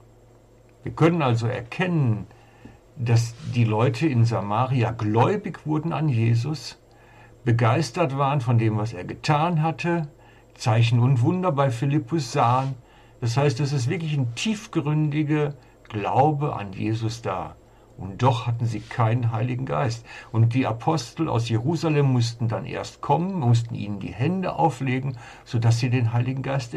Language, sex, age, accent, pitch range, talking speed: German, male, 60-79, German, 115-145 Hz, 145 wpm